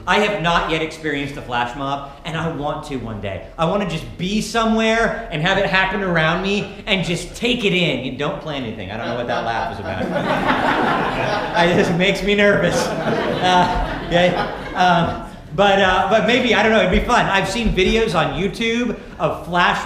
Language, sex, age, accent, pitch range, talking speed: English, male, 40-59, American, 170-220 Hz, 205 wpm